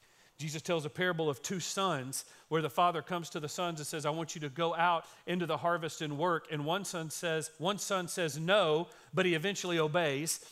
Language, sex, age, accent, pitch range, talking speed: English, male, 40-59, American, 145-185 Hz, 220 wpm